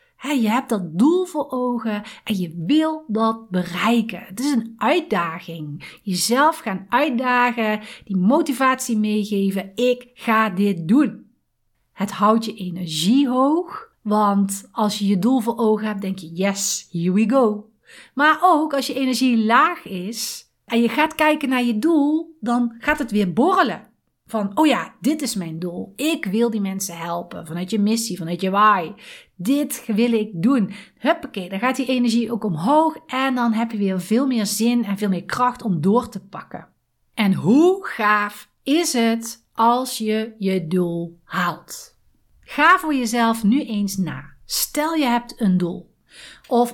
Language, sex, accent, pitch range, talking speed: Dutch, female, Dutch, 195-255 Hz, 165 wpm